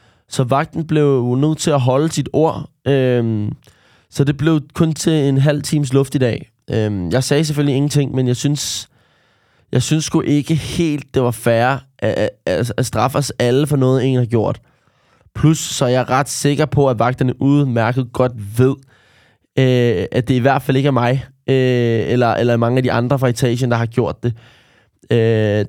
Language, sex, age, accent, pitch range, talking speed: Danish, male, 20-39, native, 120-145 Hz, 190 wpm